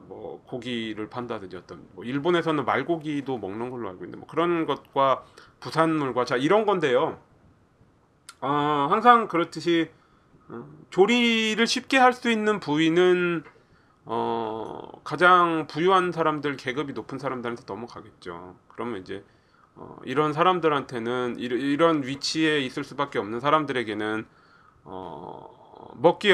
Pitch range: 125-175 Hz